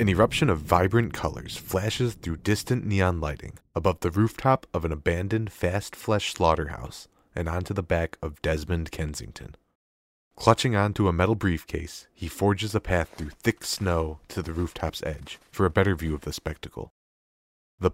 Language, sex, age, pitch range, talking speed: English, male, 30-49, 75-95 Hz, 165 wpm